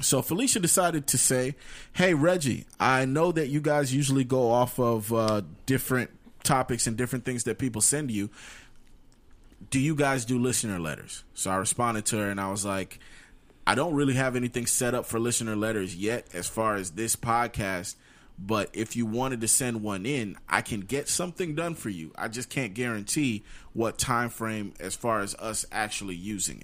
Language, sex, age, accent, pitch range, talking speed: English, male, 30-49, American, 105-135 Hz, 190 wpm